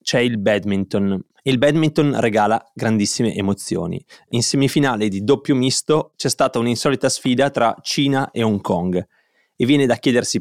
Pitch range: 105-135 Hz